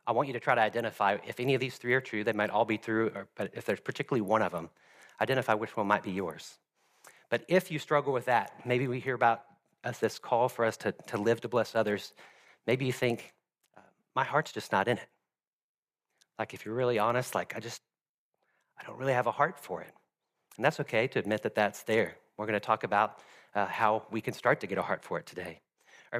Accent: American